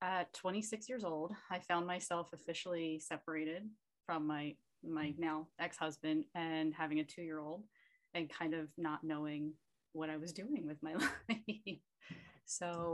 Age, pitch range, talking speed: 30-49, 160-200 Hz, 145 wpm